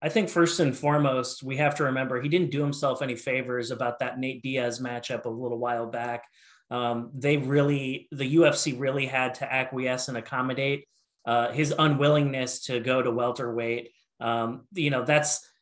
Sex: male